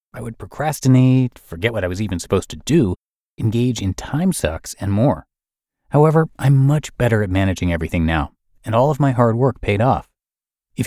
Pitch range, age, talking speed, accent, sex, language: 90-125 Hz, 30-49, 190 wpm, American, male, English